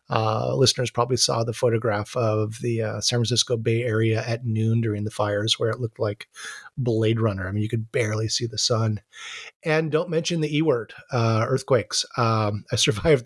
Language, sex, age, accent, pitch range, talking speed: English, male, 30-49, American, 110-130 Hz, 190 wpm